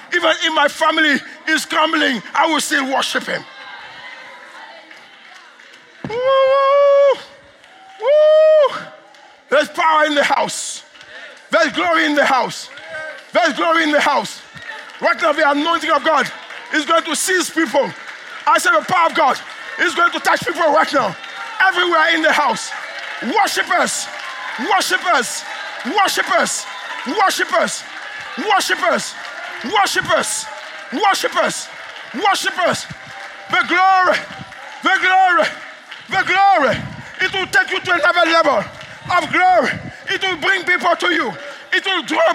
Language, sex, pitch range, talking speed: English, male, 280-355 Hz, 130 wpm